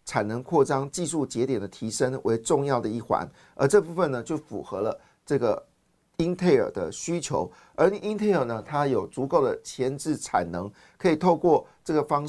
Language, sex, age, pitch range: Chinese, male, 50-69, 120-165 Hz